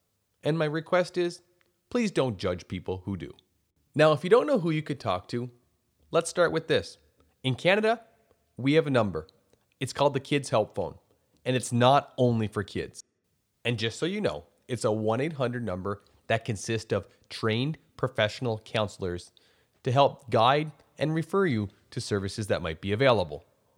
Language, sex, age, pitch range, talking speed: English, male, 30-49, 105-140 Hz, 175 wpm